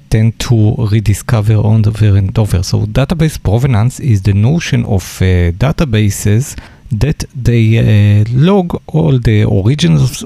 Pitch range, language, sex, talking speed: 105-130 Hz, English, male, 130 wpm